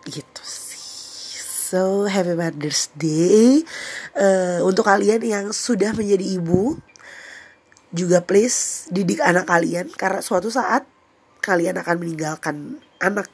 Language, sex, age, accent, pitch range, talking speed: Indonesian, female, 20-39, native, 160-195 Hz, 115 wpm